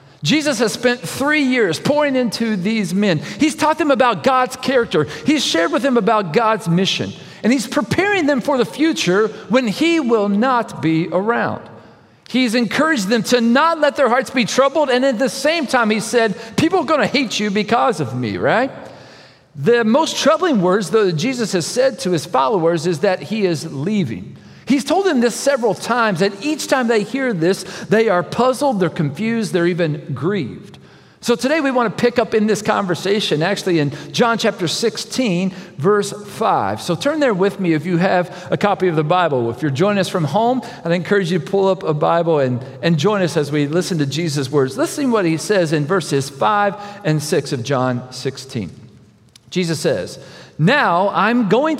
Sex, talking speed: male, 200 wpm